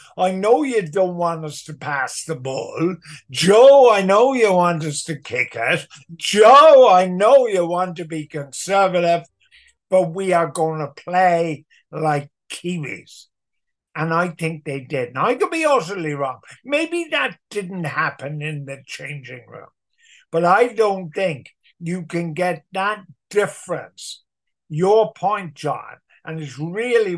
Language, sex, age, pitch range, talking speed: English, male, 50-69, 150-190 Hz, 150 wpm